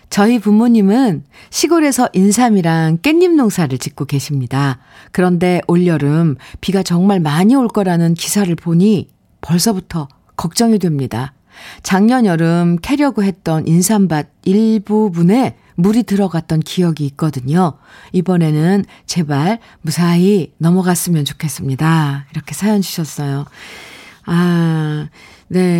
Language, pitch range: Korean, 155-195 Hz